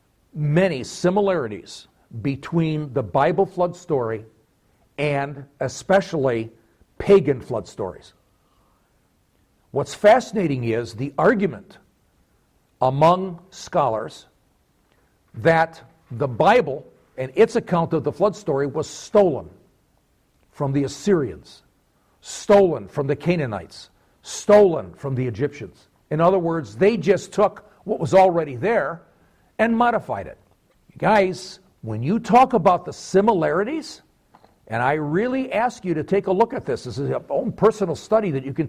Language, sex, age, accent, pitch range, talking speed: English, male, 50-69, American, 140-195 Hz, 125 wpm